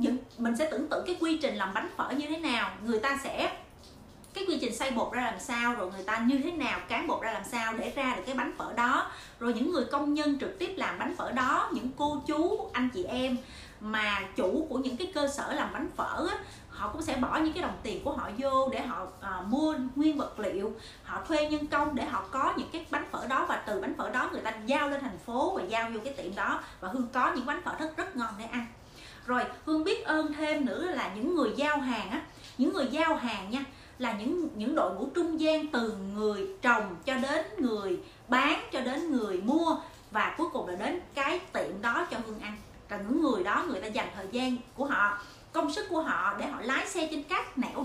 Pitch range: 235-310 Hz